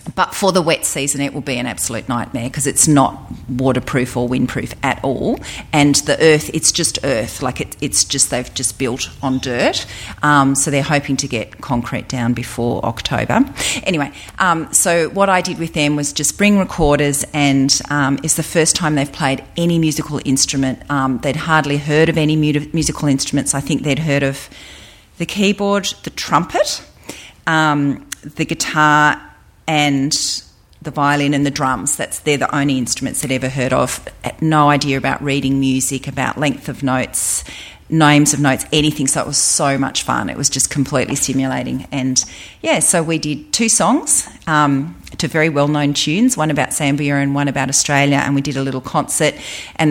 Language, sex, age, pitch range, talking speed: English, female, 40-59, 130-150 Hz, 180 wpm